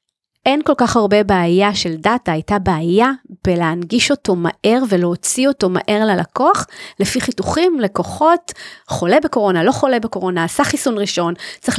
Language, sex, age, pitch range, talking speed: Hebrew, female, 30-49, 190-265 Hz, 145 wpm